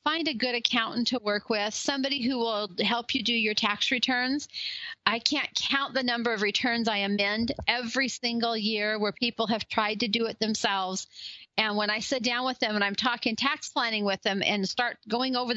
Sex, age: female, 40-59